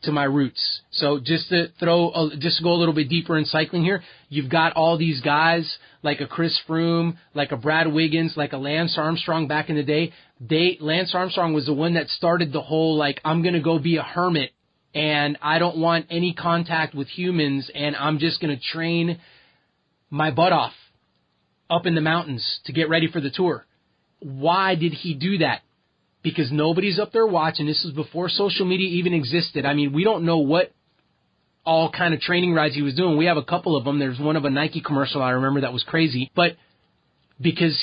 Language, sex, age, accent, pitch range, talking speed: English, male, 30-49, American, 145-170 Hz, 210 wpm